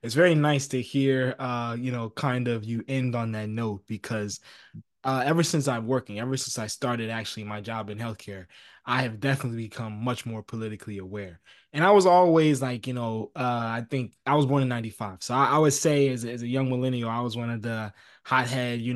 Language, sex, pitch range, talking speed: English, male, 115-140 Hz, 220 wpm